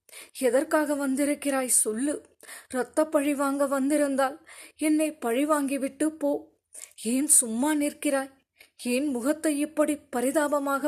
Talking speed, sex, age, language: 100 wpm, female, 20-39, Tamil